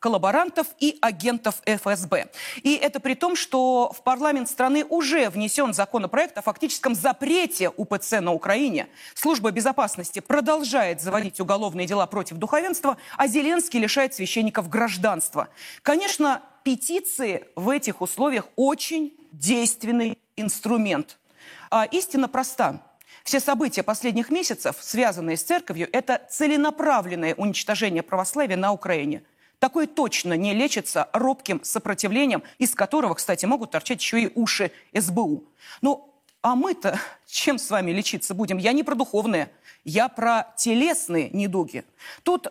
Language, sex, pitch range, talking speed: Russian, female, 205-285 Hz, 125 wpm